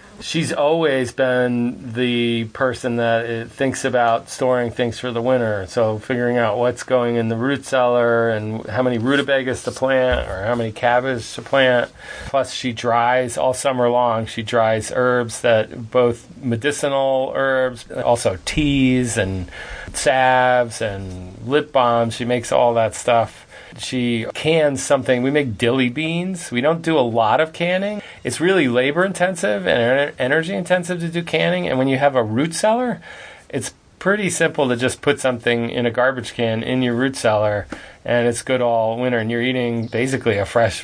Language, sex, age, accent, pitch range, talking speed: English, male, 40-59, American, 115-135 Hz, 170 wpm